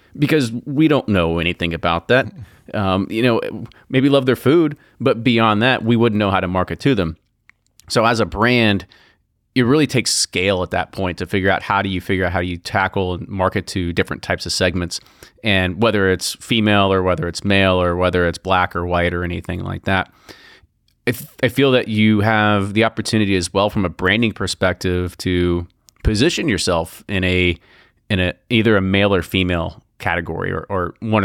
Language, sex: English, male